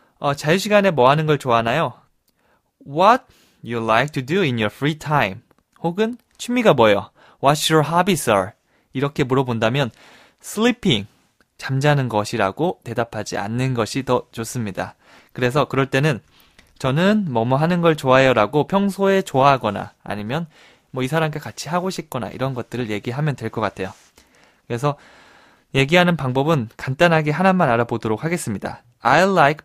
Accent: native